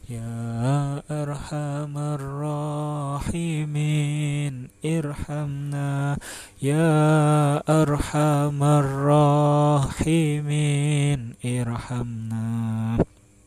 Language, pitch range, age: Indonesian, 135-150 Hz, 20-39